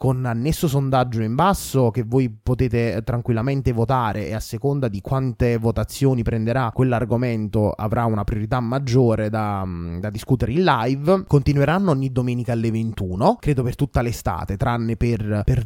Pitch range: 110-135 Hz